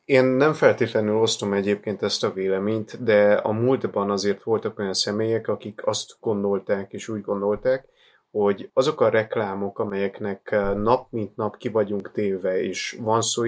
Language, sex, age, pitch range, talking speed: Hungarian, male, 20-39, 100-120 Hz, 155 wpm